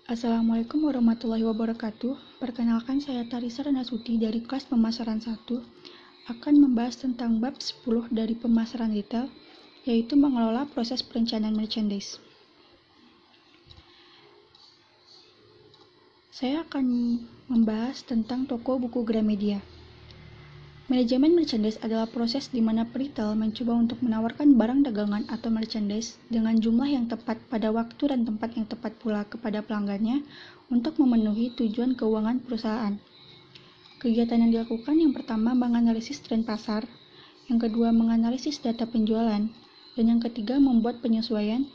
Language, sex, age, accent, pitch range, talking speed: Indonesian, female, 20-39, native, 225-260 Hz, 115 wpm